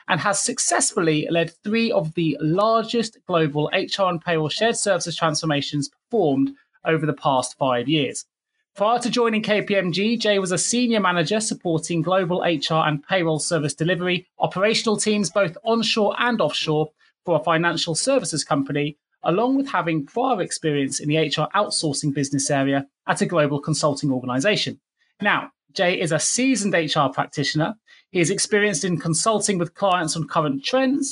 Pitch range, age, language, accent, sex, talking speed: 155-220 Hz, 30-49, English, British, male, 155 wpm